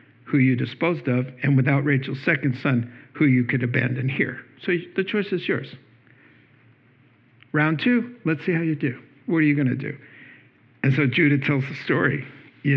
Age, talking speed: 60-79, 185 wpm